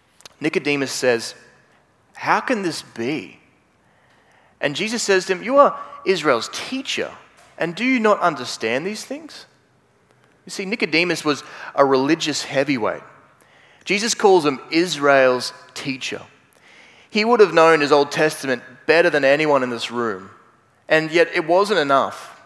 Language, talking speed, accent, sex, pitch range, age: English, 140 wpm, Australian, male, 130-175 Hz, 20-39